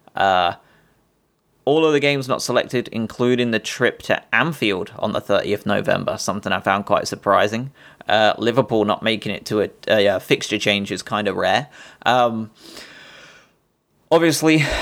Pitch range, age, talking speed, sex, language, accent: 105-115 Hz, 20-39, 155 wpm, male, English, British